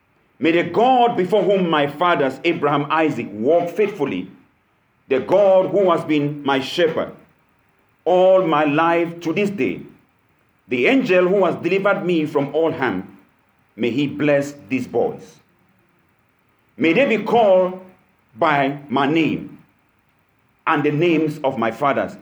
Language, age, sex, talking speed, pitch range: English, 50-69, male, 140 wpm, 145-195 Hz